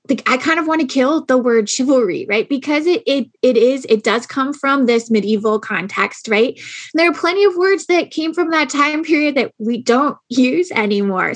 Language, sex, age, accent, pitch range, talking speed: English, female, 20-39, American, 220-285 Hz, 205 wpm